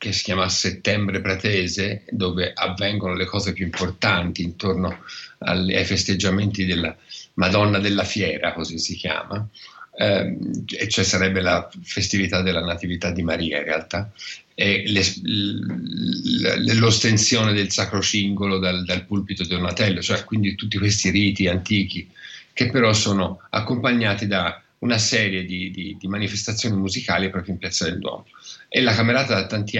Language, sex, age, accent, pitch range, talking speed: Italian, male, 50-69, native, 90-105 Hz, 145 wpm